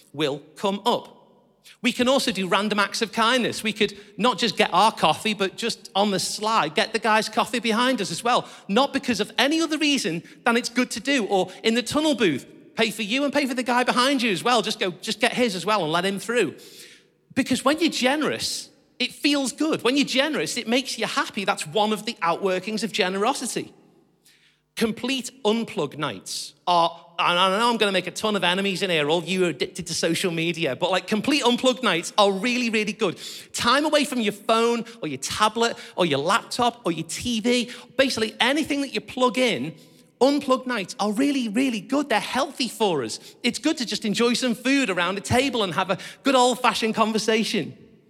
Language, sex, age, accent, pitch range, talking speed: English, male, 40-59, British, 200-250 Hz, 210 wpm